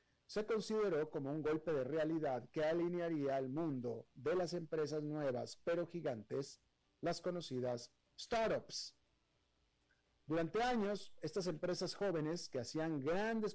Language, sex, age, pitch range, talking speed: Spanish, male, 40-59, 140-185 Hz, 125 wpm